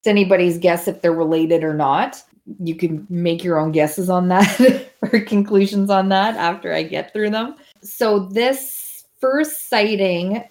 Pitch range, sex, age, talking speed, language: 170-210 Hz, female, 20-39, 165 wpm, English